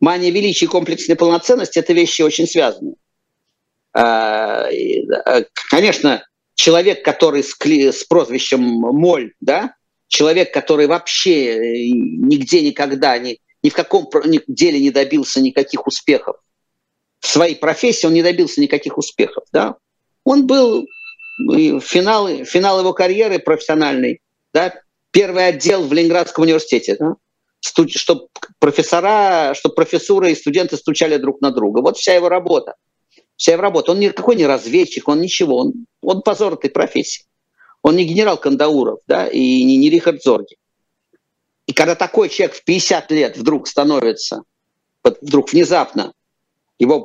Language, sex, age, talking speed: Russian, male, 50-69, 135 wpm